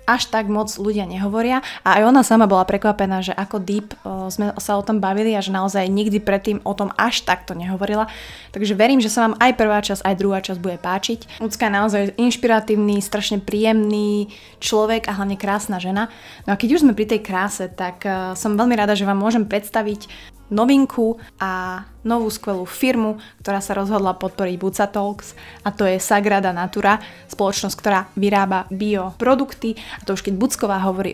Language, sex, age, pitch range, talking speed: Slovak, female, 20-39, 190-215 Hz, 185 wpm